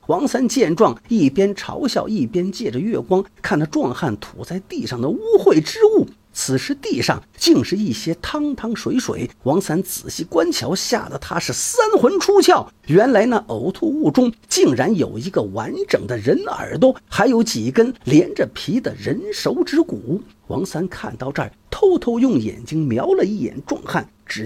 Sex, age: male, 50-69